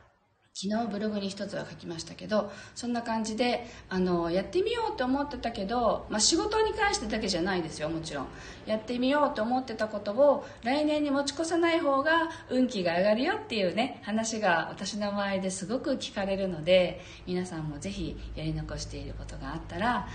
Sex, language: female, Japanese